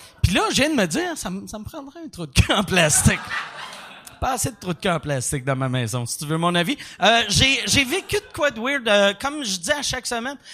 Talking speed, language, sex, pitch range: 275 wpm, French, male, 155-230 Hz